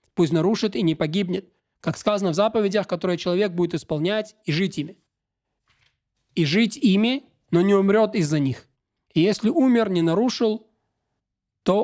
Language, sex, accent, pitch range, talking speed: Russian, male, native, 165-210 Hz, 150 wpm